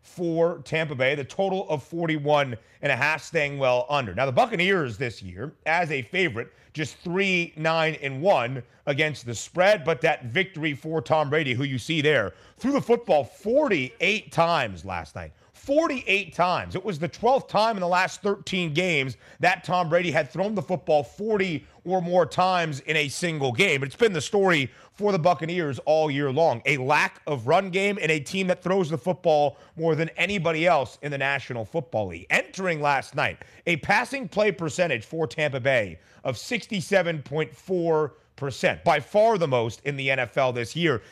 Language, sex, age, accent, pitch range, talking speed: English, male, 30-49, American, 140-185 Hz, 180 wpm